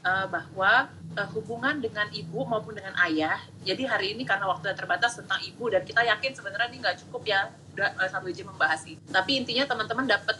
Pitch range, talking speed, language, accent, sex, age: 180-230 Hz, 195 wpm, Indonesian, native, female, 30-49